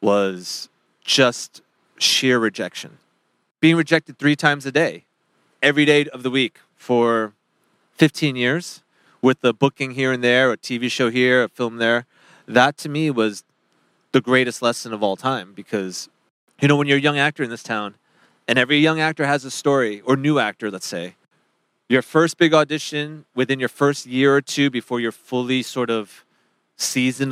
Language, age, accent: English, 30-49, American